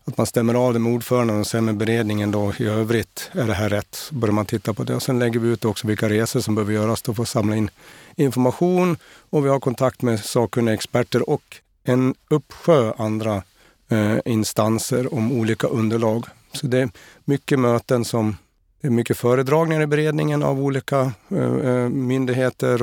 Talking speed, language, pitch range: 190 wpm, Swedish, 110-125 Hz